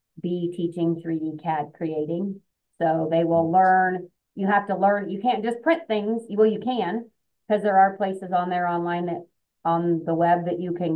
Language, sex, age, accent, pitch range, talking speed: English, female, 30-49, American, 165-180 Hz, 190 wpm